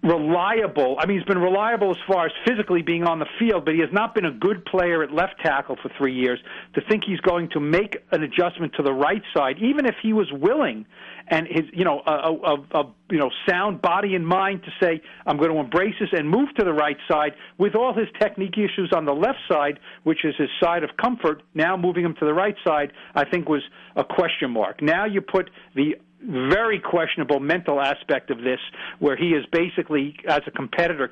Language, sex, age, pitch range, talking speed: English, male, 50-69, 145-185 Hz, 225 wpm